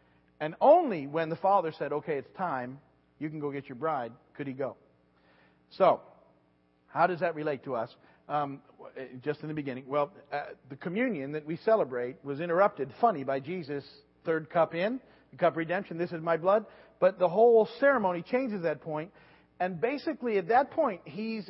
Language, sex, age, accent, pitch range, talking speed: English, male, 40-59, American, 130-195 Hz, 185 wpm